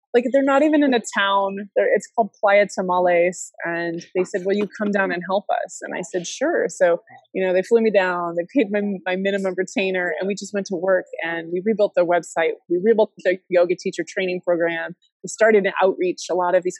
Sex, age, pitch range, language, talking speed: female, 20-39, 170-205 Hz, English, 230 wpm